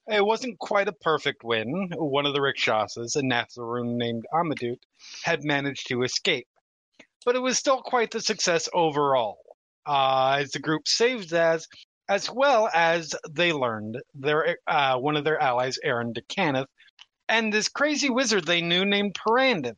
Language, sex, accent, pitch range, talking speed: English, male, American, 125-180 Hz, 165 wpm